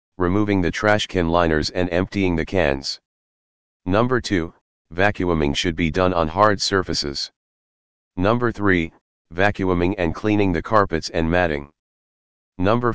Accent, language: American, English